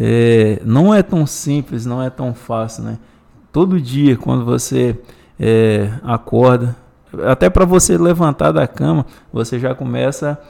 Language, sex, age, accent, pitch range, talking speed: Portuguese, male, 20-39, Brazilian, 110-140 Hz, 145 wpm